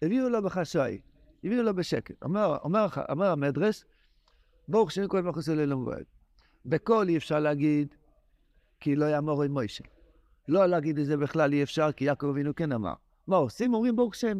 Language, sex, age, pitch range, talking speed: Hebrew, male, 50-69, 145-195 Hz, 170 wpm